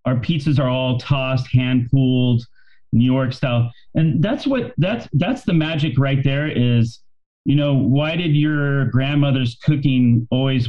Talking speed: 155 wpm